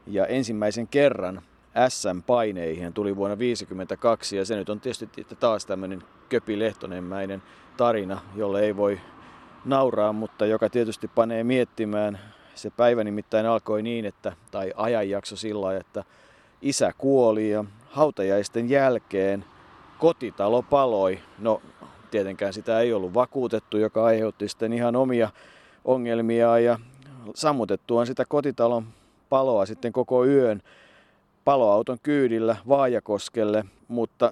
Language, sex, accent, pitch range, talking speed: Finnish, male, native, 100-120 Hz, 120 wpm